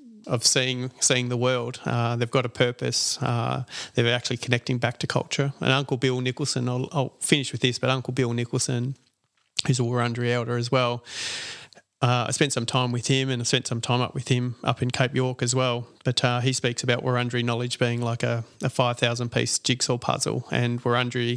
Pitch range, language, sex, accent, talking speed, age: 120-130 Hz, English, male, Australian, 210 wpm, 30-49